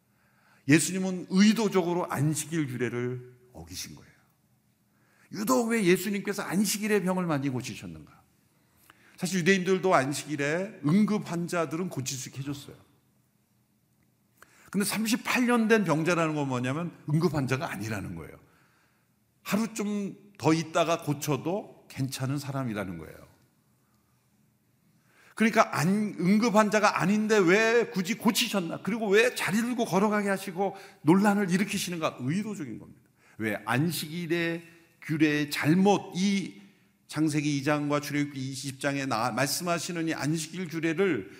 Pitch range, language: 135-200 Hz, Korean